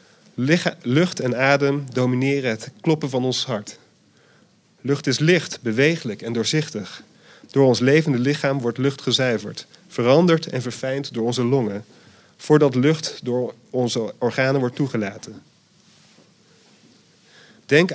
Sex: male